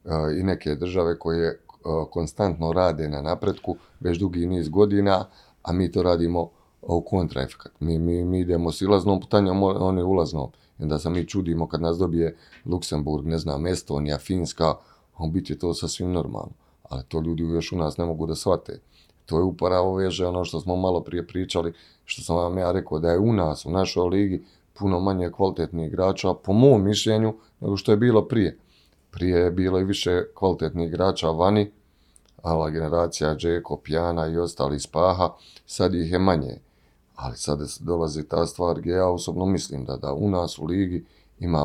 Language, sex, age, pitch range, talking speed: Croatian, male, 30-49, 80-95 Hz, 175 wpm